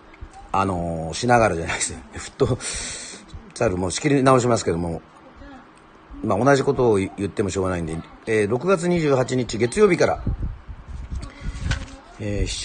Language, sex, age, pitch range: Japanese, male, 40-59, 90-120 Hz